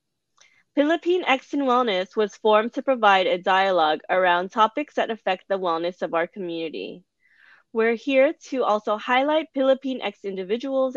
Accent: American